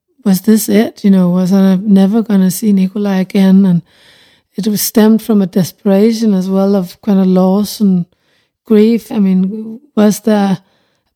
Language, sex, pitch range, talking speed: English, female, 185-215 Hz, 175 wpm